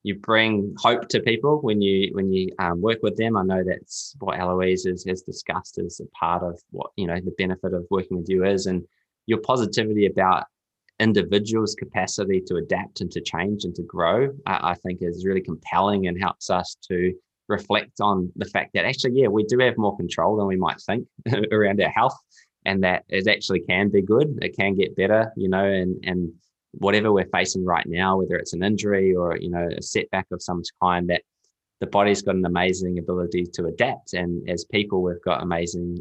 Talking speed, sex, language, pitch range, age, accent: 210 wpm, male, English, 90-105 Hz, 20-39, Australian